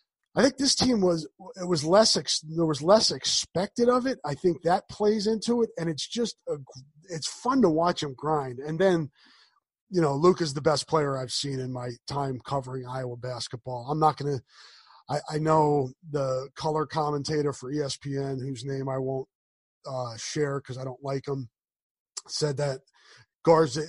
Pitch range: 140-175 Hz